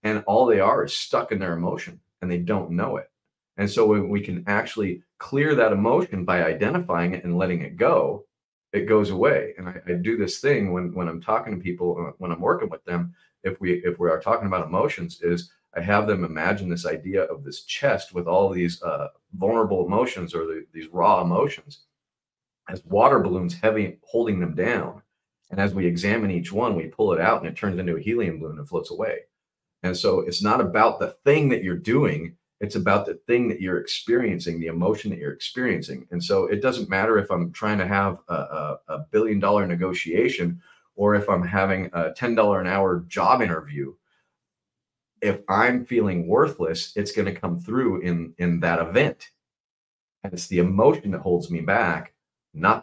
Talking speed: 200 wpm